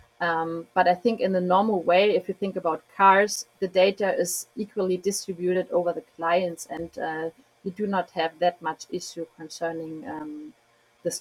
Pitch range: 175-210 Hz